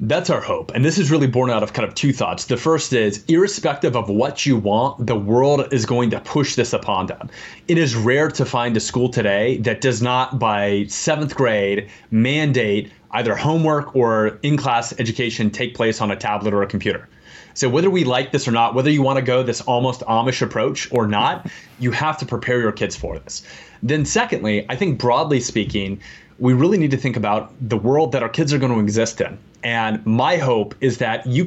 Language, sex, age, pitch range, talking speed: English, male, 30-49, 115-145 Hz, 215 wpm